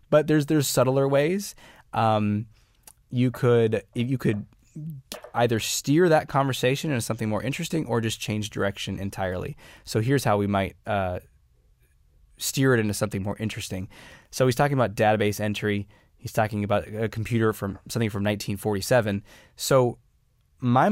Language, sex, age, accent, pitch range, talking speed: English, male, 20-39, American, 105-150 Hz, 150 wpm